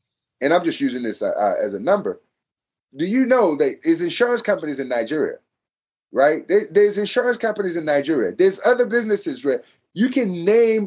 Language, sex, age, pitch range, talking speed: English, male, 30-49, 175-245 Hz, 165 wpm